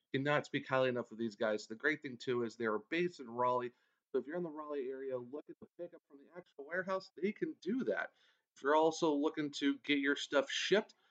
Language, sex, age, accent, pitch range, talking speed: English, male, 40-59, American, 140-185 Hz, 245 wpm